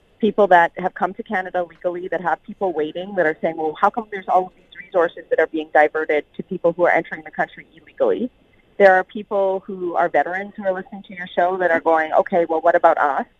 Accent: American